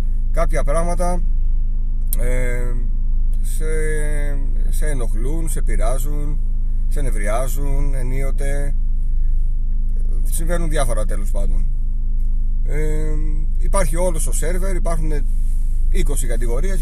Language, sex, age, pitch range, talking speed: Greek, male, 30-49, 105-145 Hz, 80 wpm